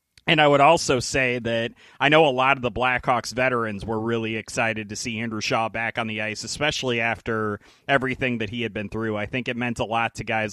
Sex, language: male, English